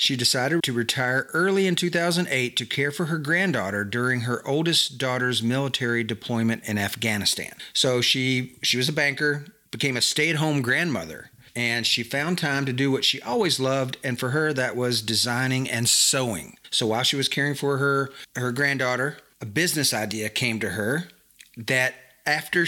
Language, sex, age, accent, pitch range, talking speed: English, male, 40-59, American, 120-145 Hz, 170 wpm